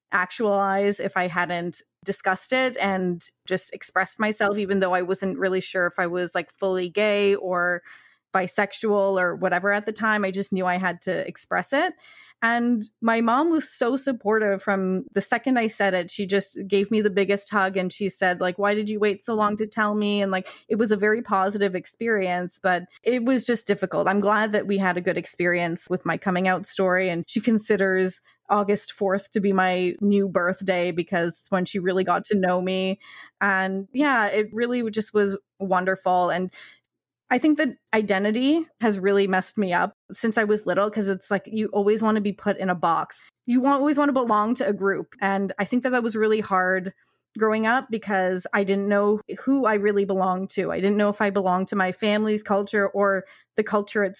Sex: female